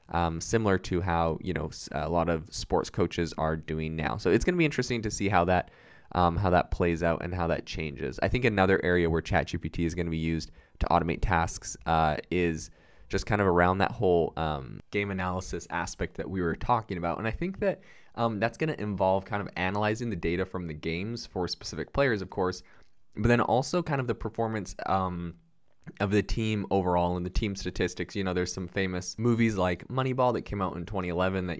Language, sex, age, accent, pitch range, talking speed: English, male, 20-39, American, 85-100 Hz, 220 wpm